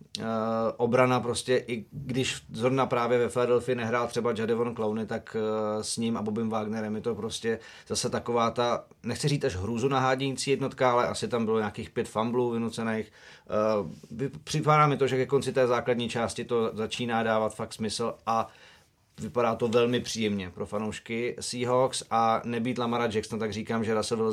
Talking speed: 175 wpm